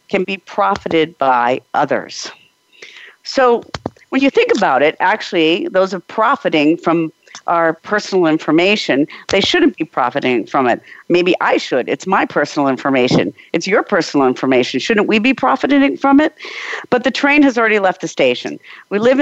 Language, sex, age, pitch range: English, female, 50-69, 175-250 Hz